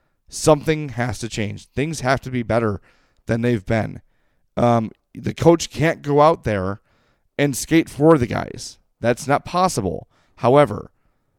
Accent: American